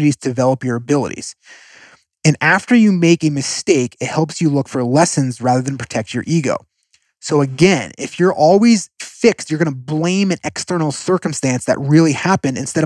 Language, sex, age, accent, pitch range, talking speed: English, male, 30-49, American, 130-175 Hz, 175 wpm